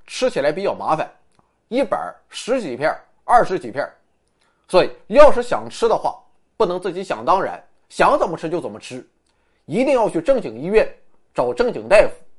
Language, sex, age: Chinese, male, 20-39